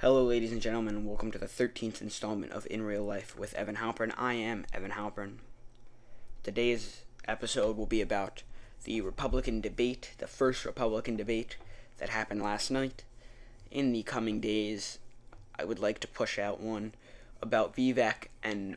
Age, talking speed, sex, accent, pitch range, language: 20-39, 160 wpm, male, American, 105-120 Hz, English